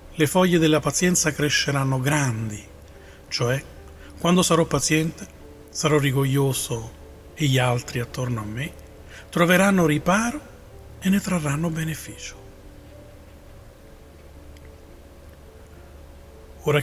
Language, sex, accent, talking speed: Italian, male, native, 90 wpm